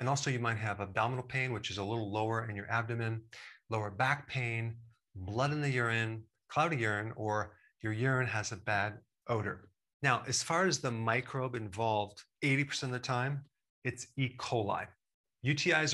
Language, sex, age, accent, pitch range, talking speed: English, male, 40-59, American, 110-135 Hz, 175 wpm